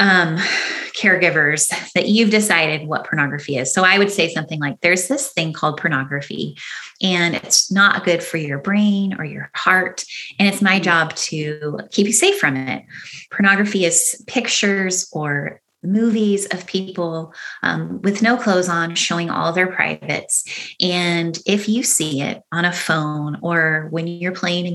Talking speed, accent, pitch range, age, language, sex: 165 wpm, American, 160-200 Hz, 30-49, English, female